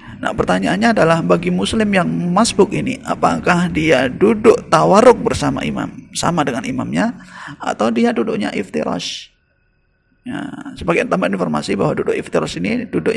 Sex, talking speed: male, 135 wpm